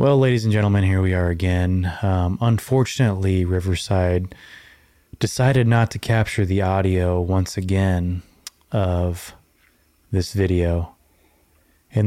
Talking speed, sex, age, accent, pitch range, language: 115 wpm, male, 20-39, American, 95-110 Hz, English